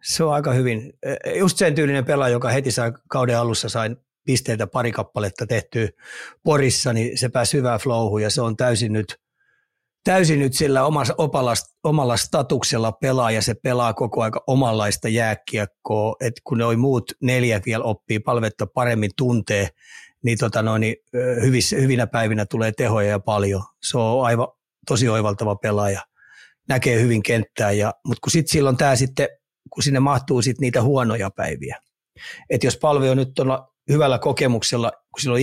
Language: Finnish